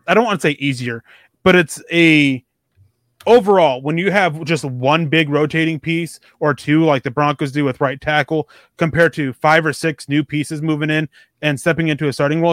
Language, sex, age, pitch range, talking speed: English, male, 20-39, 140-165 Hz, 200 wpm